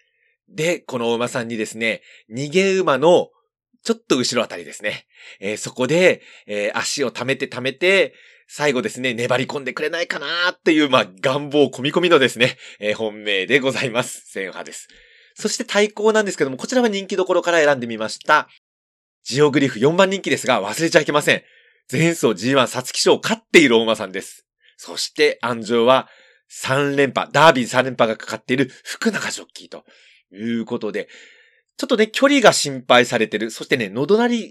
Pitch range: 115-185 Hz